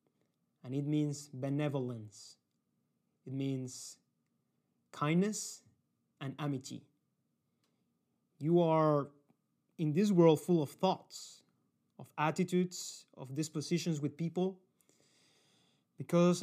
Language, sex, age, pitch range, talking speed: English, male, 30-49, 130-165 Hz, 90 wpm